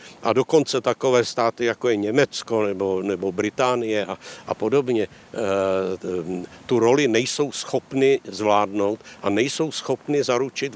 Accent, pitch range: native, 105-130 Hz